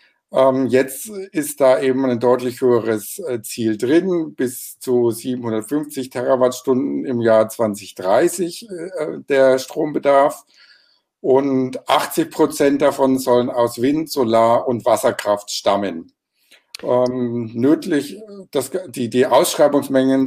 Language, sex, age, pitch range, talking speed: German, male, 50-69, 120-140 Hz, 105 wpm